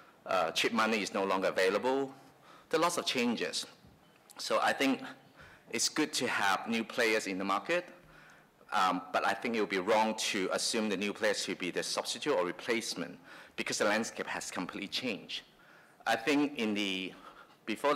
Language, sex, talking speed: English, male, 180 wpm